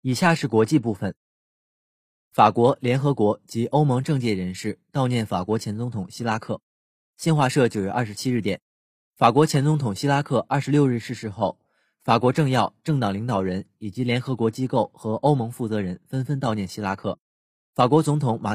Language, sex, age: Chinese, male, 20-39